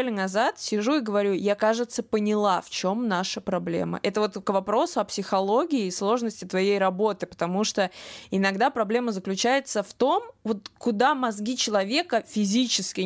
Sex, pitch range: female, 200-260 Hz